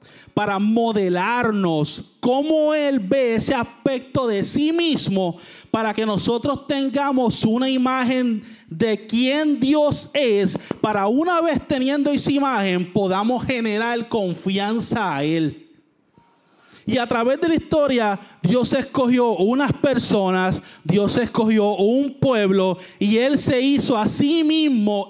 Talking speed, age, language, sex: 125 wpm, 30-49, Spanish, male